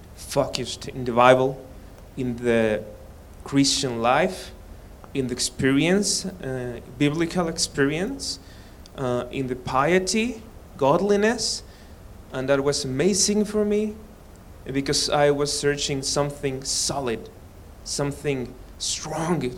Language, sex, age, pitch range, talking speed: English, male, 30-49, 95-145 Hz, 100 wpm